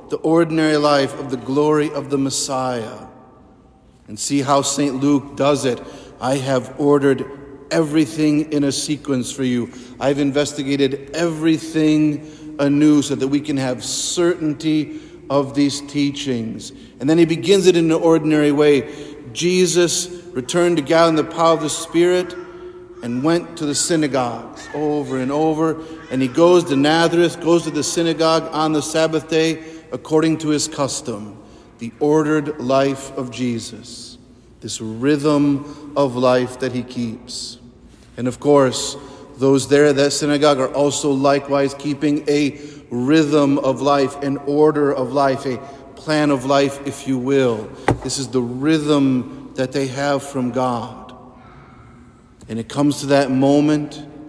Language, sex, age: English, male, 50-69